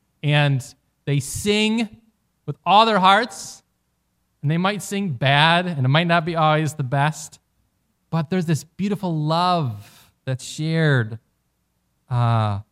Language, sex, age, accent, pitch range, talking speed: English, male, 20-39, American, 120-180 Hz, 130 wpm